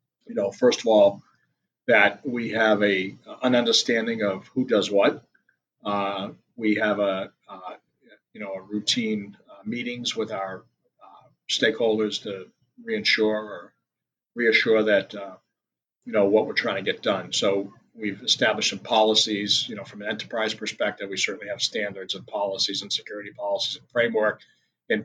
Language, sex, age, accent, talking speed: English, male, 40-59, American, 160 wpm